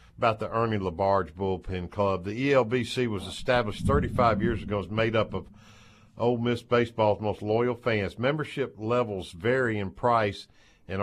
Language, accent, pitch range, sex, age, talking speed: English, American, 105-140 Hz, male, 50-69, 160 wpm